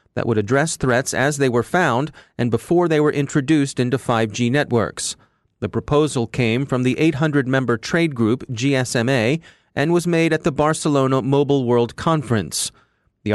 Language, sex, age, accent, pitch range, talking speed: English, male, 30-49, American, 120-150 Hz, 155 wpm